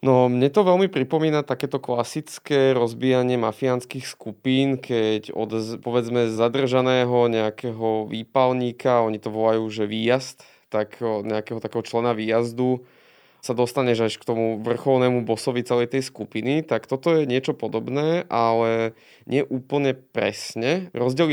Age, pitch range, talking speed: 20-39, 110-130 Hz, 130 wpm